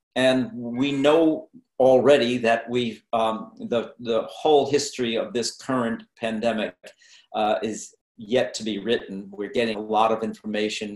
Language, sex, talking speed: English, male, 150 wpm